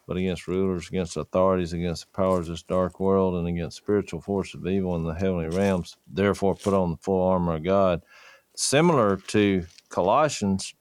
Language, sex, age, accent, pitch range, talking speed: English, male, 50-69, American, 85-100 Hz, 185 wpm